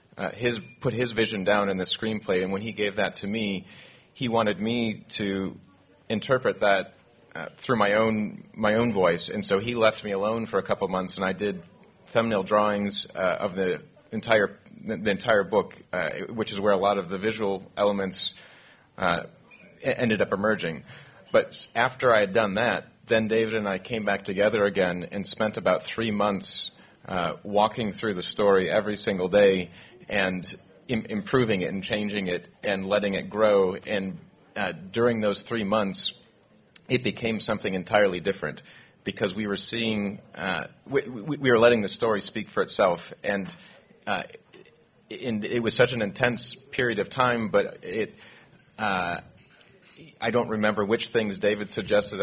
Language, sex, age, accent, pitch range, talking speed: French, male, 30-49, American, 100-115 Hz, 170 wpm